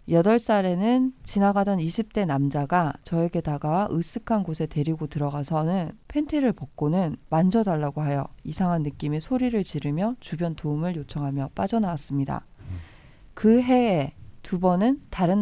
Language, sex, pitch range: Korean, female, 155-215 Hz